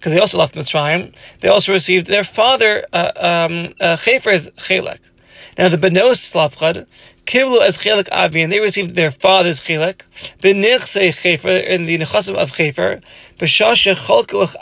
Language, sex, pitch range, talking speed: English, male, 170-205 Hz, 140 wpm